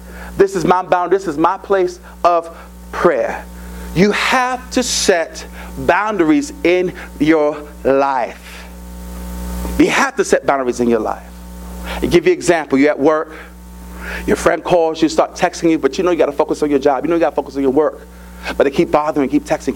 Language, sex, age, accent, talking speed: English, male, 40-59, American, 200 wpm